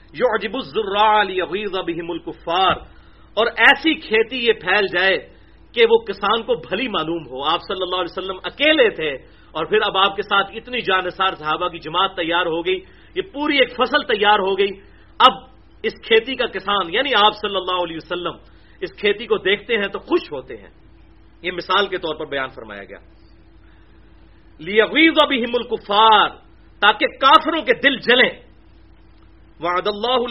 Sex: male